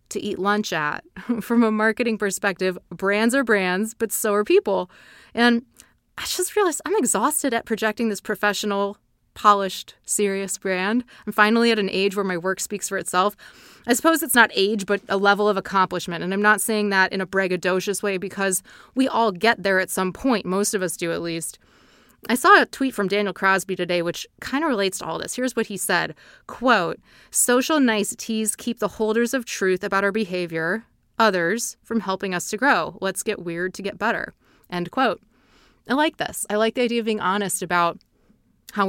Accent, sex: American, female